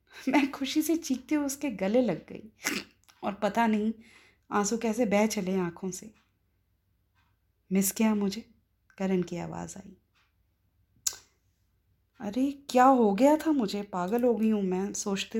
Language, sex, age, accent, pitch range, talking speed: Hindi, female, 20-39, native, 185-245 Hz, 145 wpm